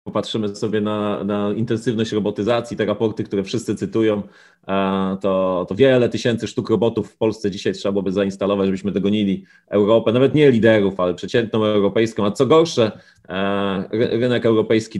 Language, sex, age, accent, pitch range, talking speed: Polish, male, 30-49, native, 105-135 Hz, 150 wpm